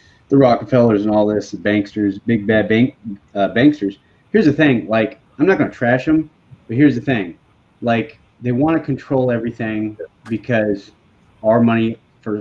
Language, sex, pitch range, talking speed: English, male, 105-130 Hz, 170 wpm